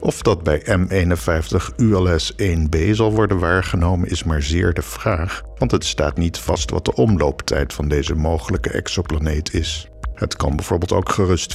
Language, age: Dutch, 50-69